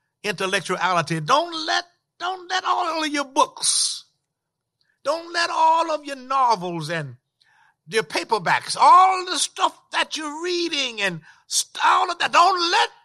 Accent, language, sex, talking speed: American, English, male, 140 wpm